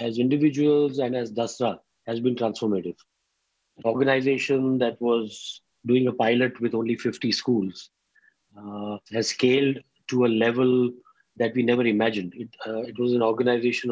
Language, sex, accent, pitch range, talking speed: English, male, Indian, 110-125 Hz, 150 wpm